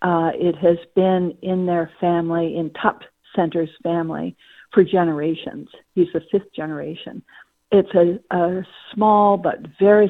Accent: American